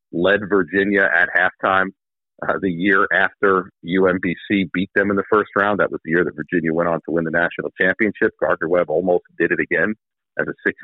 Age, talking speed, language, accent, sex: 50-69, 200 wpm, English, American, male